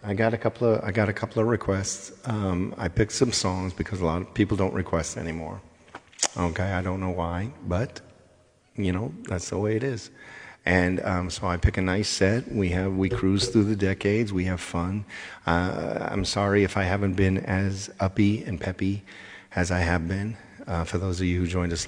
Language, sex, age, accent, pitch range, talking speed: English, male, 50-69, American, 90-105 Hz, 215 wpm